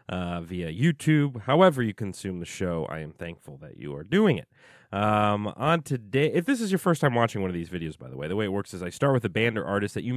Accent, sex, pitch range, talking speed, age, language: American, male, 95-140 Hz, 275 wpm, 30-49, English